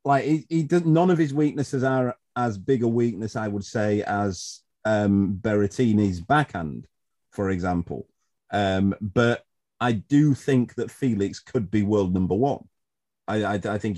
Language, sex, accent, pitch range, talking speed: English, male, British, 95-115 Hz, 165 wpm